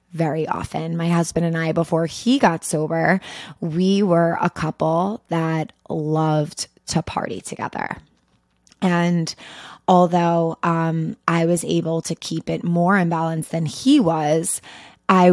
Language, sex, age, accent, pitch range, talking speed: English, female, 20-39, American, 160-180 Hz, 135 wpm